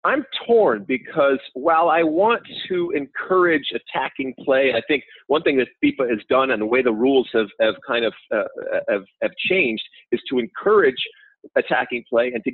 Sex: male